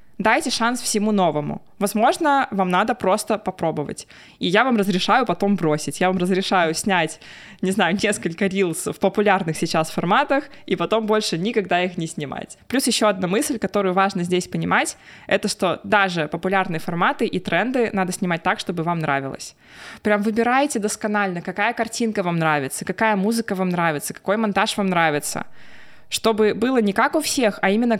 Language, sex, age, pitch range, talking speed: Russian, female, 20-39, 180-220 Hz, 165 wpm